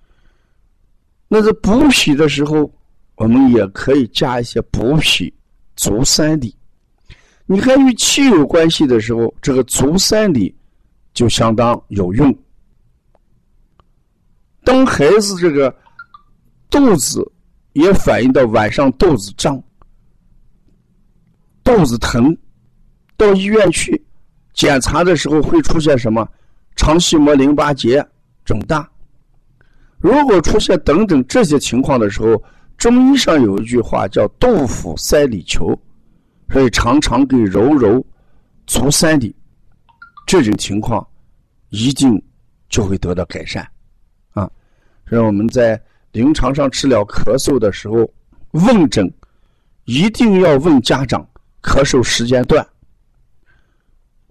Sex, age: male, 50-69